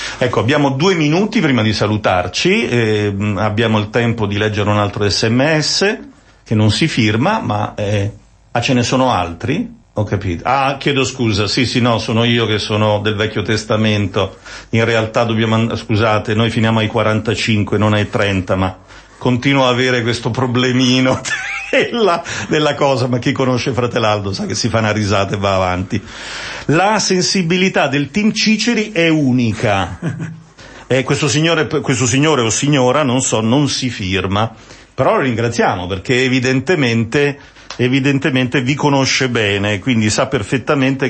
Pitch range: 105-135 Hz